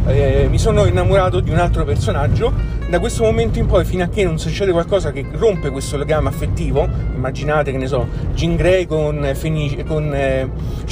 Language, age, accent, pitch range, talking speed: Italian, 30-49, native, 110-145 Hz, 180 wpm